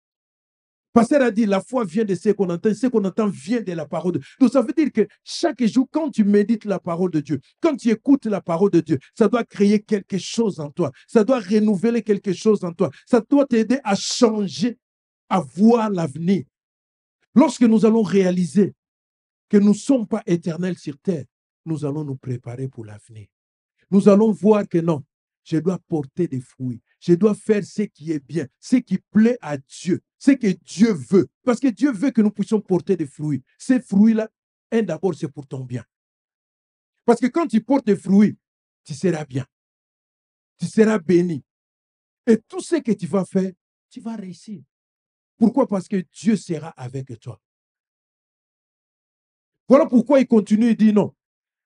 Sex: male